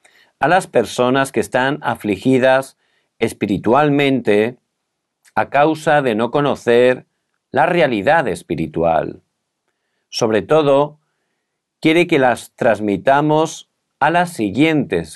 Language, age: Korean, 50-69